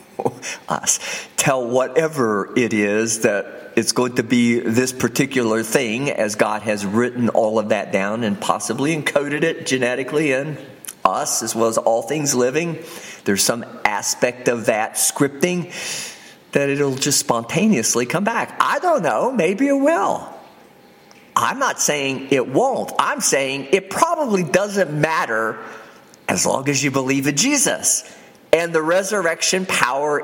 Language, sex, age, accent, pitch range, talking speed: English, male, 50-69, American, 135-215 Hz, 145 wpm